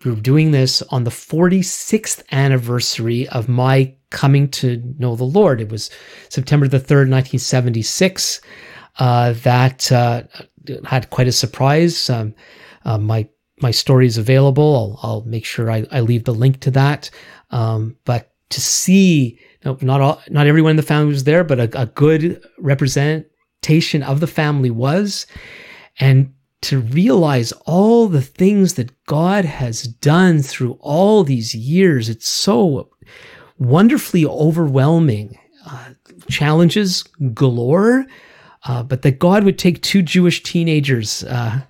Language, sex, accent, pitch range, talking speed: English, male, American, 125-155 Hz, 140 wpm